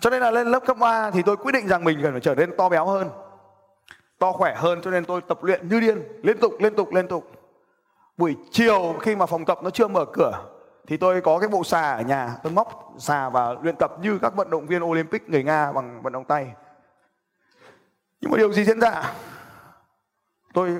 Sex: male